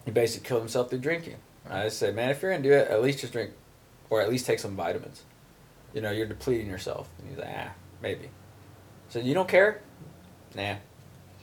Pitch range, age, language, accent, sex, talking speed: 110-140 Hz, 20-39, English, American, male, 205 wpm